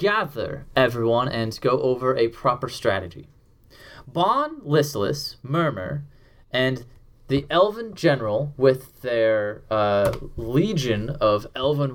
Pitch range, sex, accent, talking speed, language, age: 115-155 Hz, male, American, 105 wpm, English, 20-39